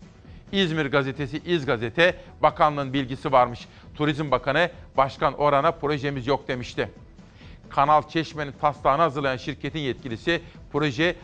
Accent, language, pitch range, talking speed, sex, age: native, Turkish, 140-170 Hz, 110 wpm, male, 40-59